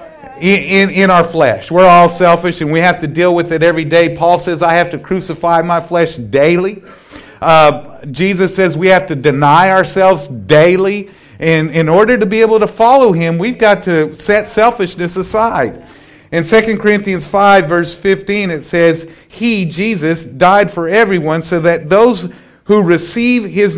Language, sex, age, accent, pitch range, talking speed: English, male, 50-69, American, 145-185 Hz, 175 wpm